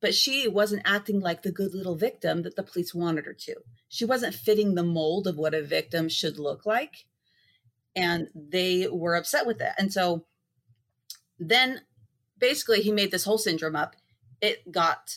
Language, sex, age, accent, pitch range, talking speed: English, female, 30-49, American, 155-200 Hz, 180 wpm